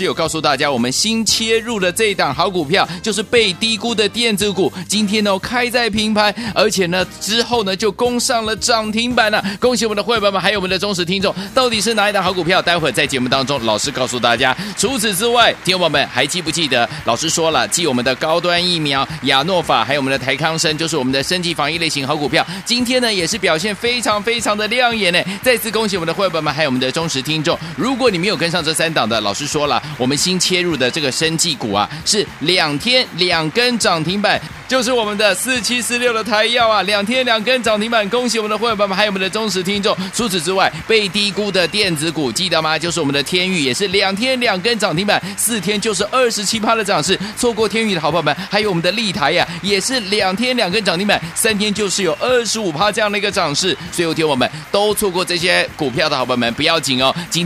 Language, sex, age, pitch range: Chinese, male, 30-49, 160-220 Hz